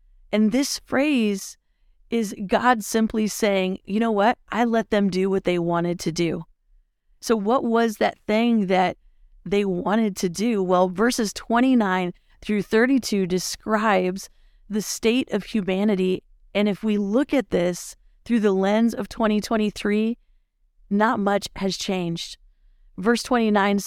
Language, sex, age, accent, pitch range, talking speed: English, female, 40-59, American, 185-215 Hz, 140 wpm